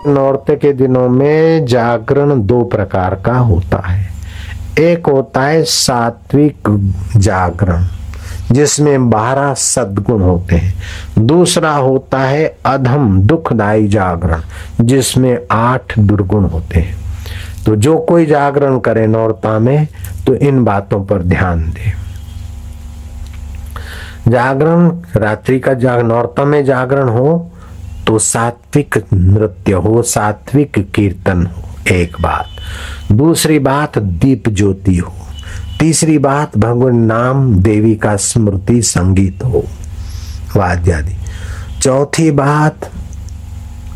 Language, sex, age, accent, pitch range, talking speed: Hindi, male, 50-69, native, 90-135 Hz, 105 wpm